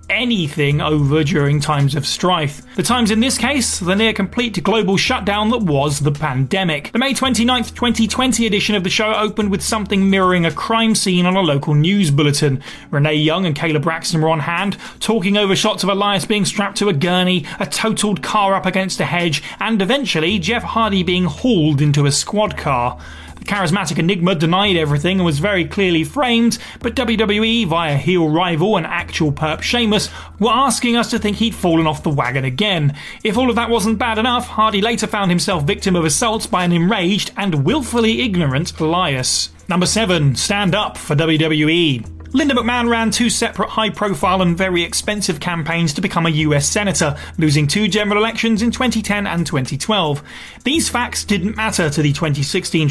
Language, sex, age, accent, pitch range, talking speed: English, male, 30-49, British, 160-220 Hz, 185 wpm